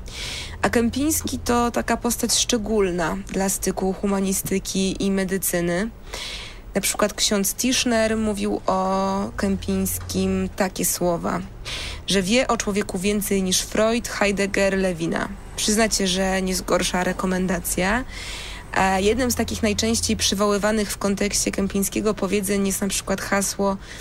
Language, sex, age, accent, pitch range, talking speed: Polish, female, 20-39, native, 170-220 Hz, 120 wpm